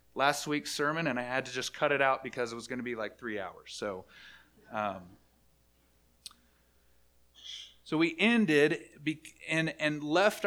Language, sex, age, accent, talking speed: English, male, 30-49, American, 160 wpm